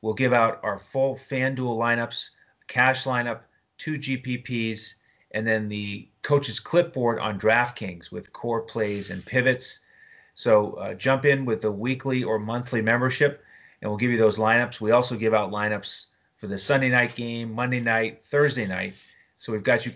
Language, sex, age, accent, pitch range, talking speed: English, male, 30-49, American, 115-135 Hz, 170 wpm